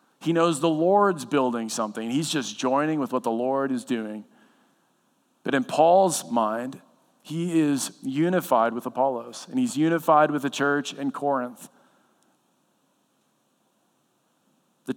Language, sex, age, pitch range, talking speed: English, male, 40-59, 120-155 Hz, 130 wpm